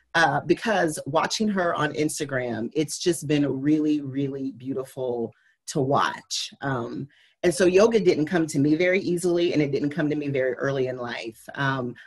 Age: 40-59